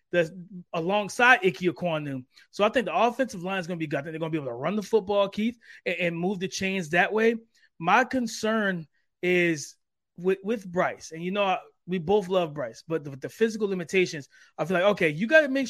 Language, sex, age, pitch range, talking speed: English, male, 20-39, 175-225 Hz, 230 wpm